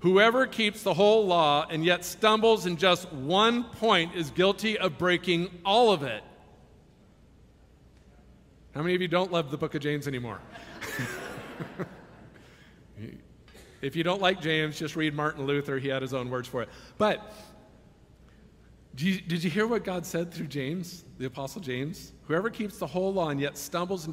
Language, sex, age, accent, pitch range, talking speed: English, male, 50-69, American, 165-250 Hz, 165 wpm